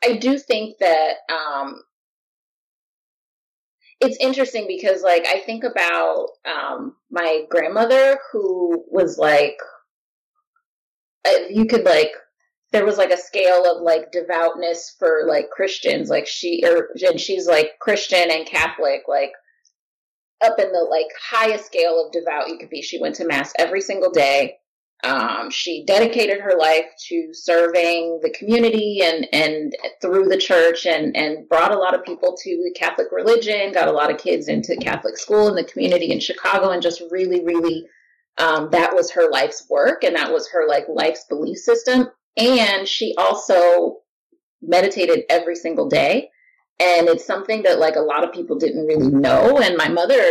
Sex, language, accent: female, English, American